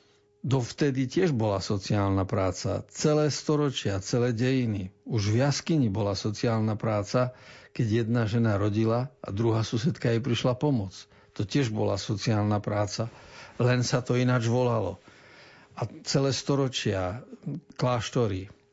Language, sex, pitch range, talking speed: Slovak, male, 105-125 Hz, 125 wpm